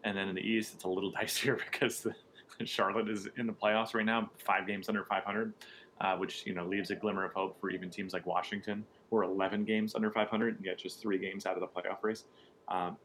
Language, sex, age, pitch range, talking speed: English, male, 30-49, 95-110 Hz, 245 wpm